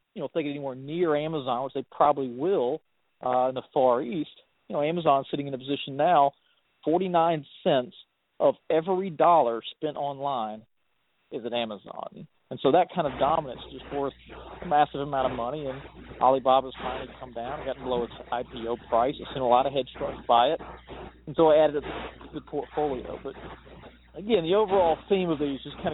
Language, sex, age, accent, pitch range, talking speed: English, male, 40-59, American, 130-155 Hz, 185 wpm